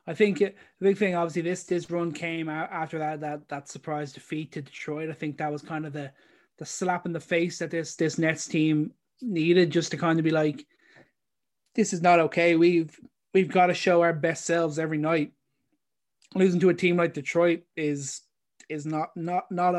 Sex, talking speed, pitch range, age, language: male, 210 wpm, 150-175 Hz, 20-39, English